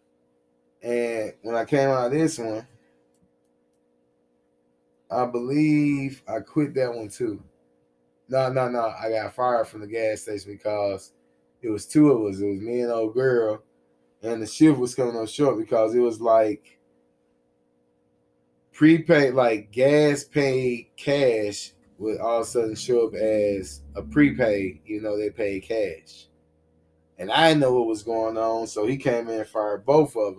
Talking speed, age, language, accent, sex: 165 wpm, 20-39, English, American, male